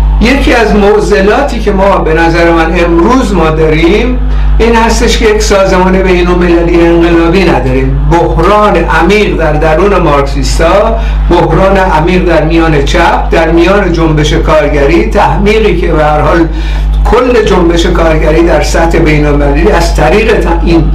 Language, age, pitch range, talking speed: Persian, 60-79, 150-180 Hz, 135 wpm